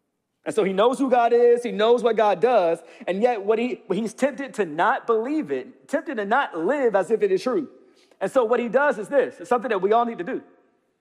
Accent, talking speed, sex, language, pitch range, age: American, 250 wpm, male, English, 185-260 Hz, 40-59